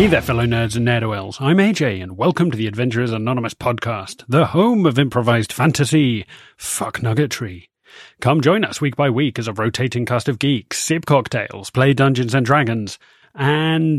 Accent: British